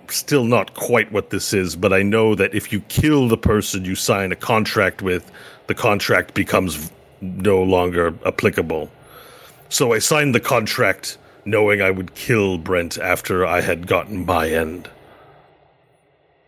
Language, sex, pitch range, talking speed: English, male, 90-105 Hz, 155 wpm